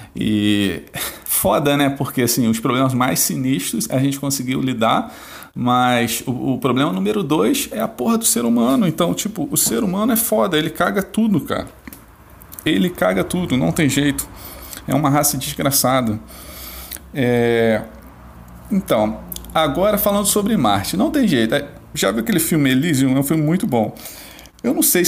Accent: Brazilian